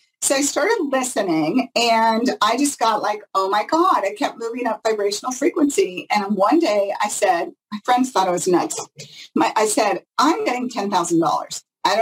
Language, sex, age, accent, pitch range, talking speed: English, female, 40-59, American, 190-300 Hz, 185 wpm